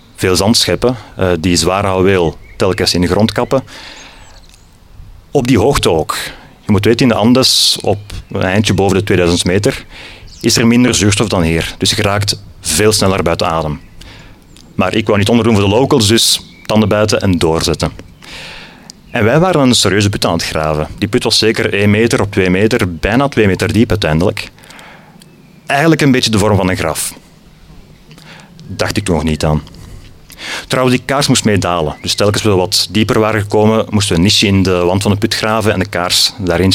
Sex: male